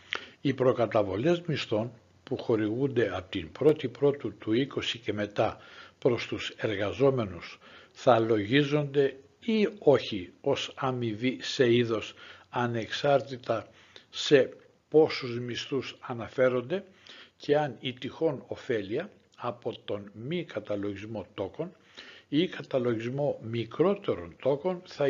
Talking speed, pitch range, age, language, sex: 110 wpm, 110-150 Hz, 60-79, Greek, male